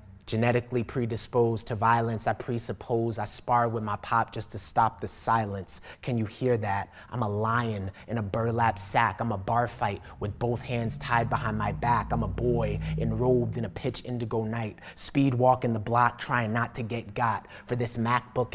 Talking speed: 190 wpm